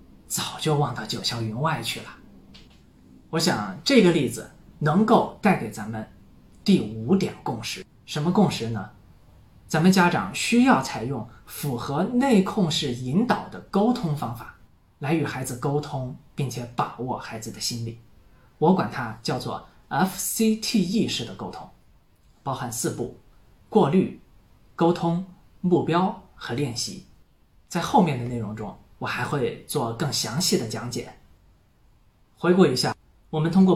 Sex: male